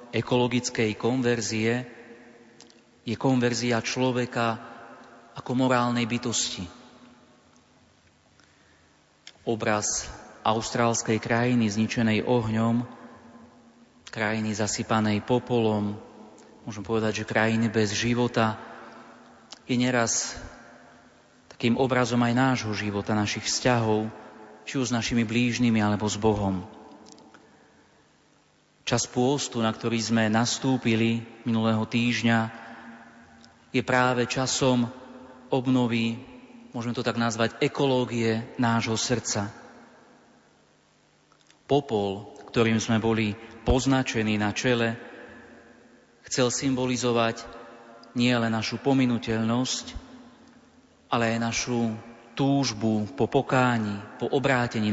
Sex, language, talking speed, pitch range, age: male, Slovak, 85 wpm, 110-125 Hz, 30-49